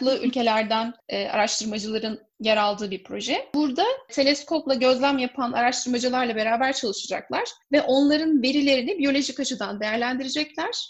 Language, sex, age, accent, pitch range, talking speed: Turkish, female, 10-29, native, 230-280 Hz, 110 wpm